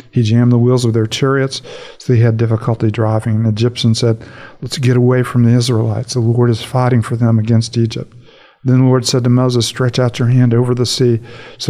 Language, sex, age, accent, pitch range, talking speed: English, male, 50-69, American, 115-125 Hz, 220 wpm